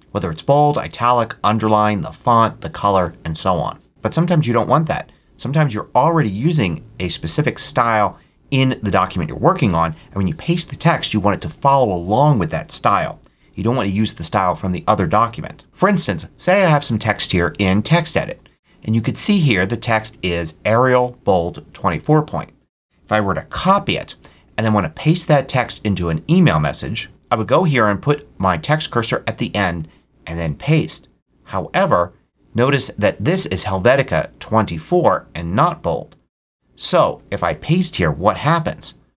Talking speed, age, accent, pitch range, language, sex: 195 wpm, 30-49, American, 95-145 Hz, English, male